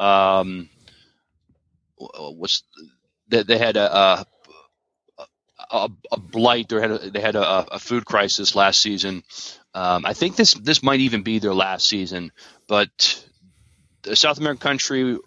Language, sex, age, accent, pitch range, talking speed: English, male, 30-49, American, 95-120 Hz, 145 wpm